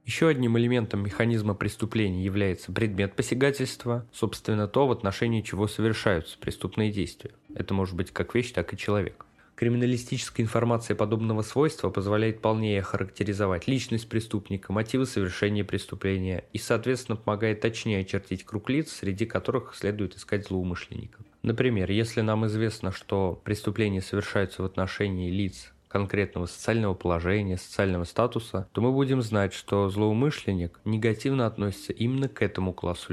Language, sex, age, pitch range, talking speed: Russian, male, 20-39, 95-115 Hz, 135 wpm